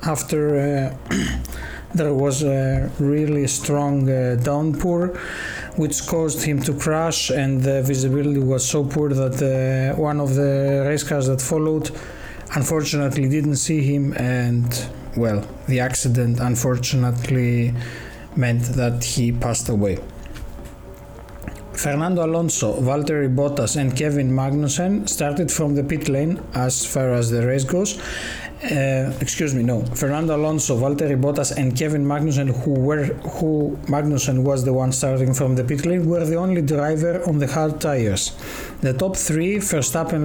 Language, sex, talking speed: Greek, male, 140 wpm